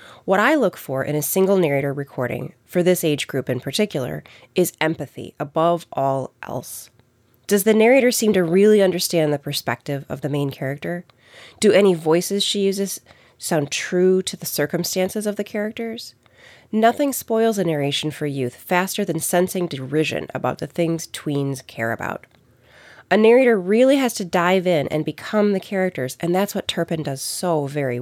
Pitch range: 145-205 Hz